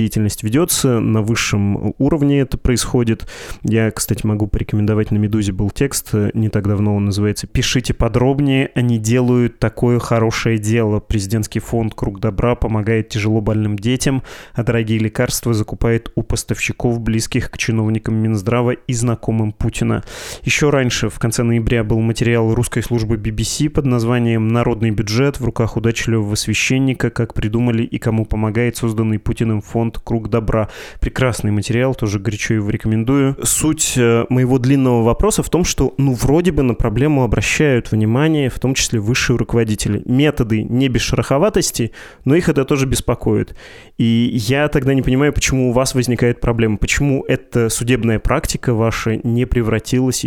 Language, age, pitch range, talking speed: Russian, 20-39, 110-130 Hz, 150 wpm